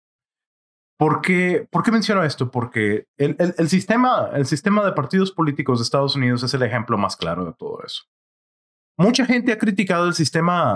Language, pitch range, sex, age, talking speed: English, 125-180 Hz, male, 30-49, 180 wpm